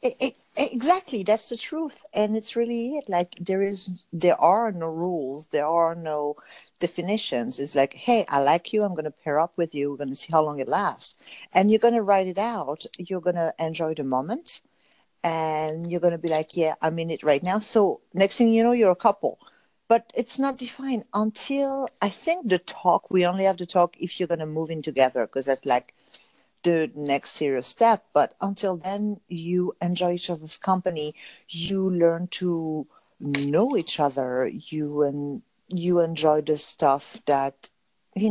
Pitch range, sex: 150-210 Hz, female